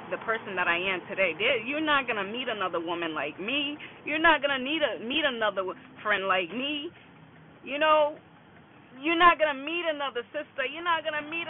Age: 20-39